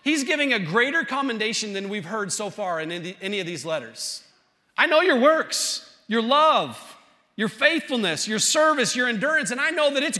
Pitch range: 150-235 Hz